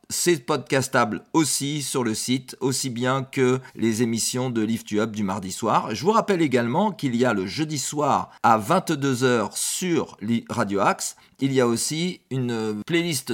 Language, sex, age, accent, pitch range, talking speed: French, male, 40-59, French, 120-150 Hz, 175 wpm